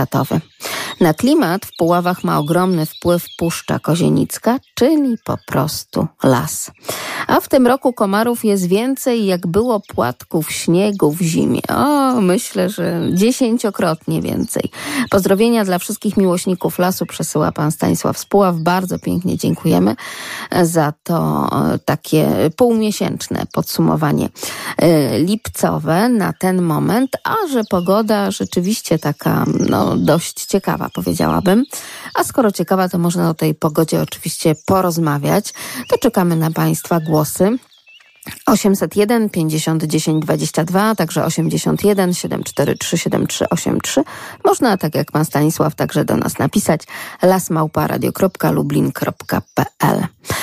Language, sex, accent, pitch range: Polish, female, native, 160-210 Hz